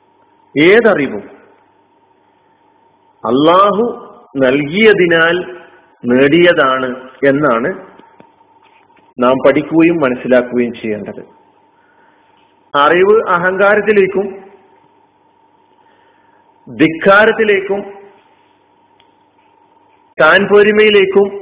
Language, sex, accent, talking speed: Malayalam, male, native, 35 wpm